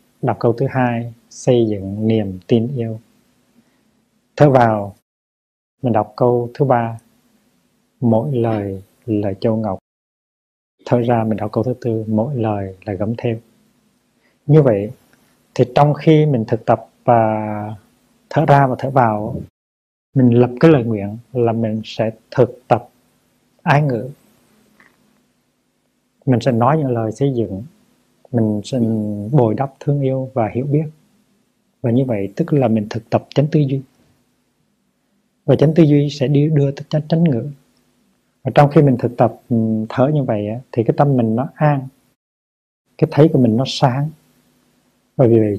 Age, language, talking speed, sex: 20-39, Vietnamese, 155 wpm, male